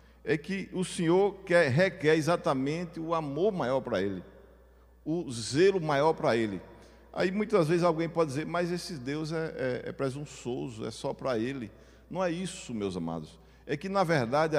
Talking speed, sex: 175 wpm, male